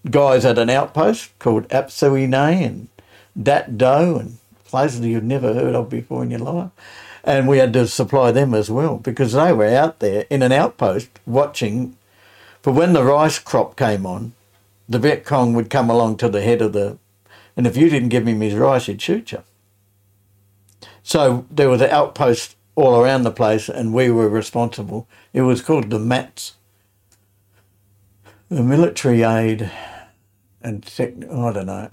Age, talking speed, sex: 60-79, 175 wpm, male